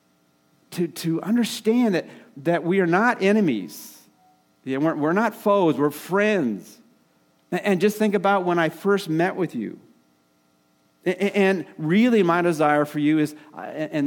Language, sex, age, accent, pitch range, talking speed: English, male, 40-59, American, 125-180 Hz, 130 wpm